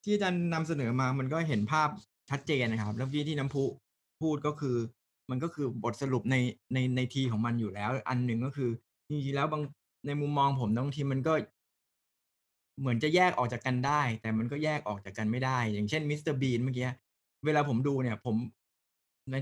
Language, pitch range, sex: Thai, 115-150 Hz, male